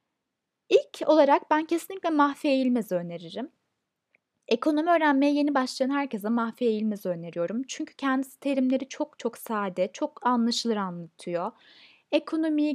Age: 20-39